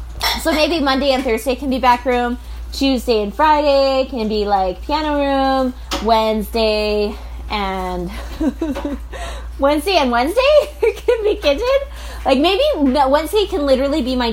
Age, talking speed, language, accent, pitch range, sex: 20-39, 135 wpm, English, American, 210-285 Hz, female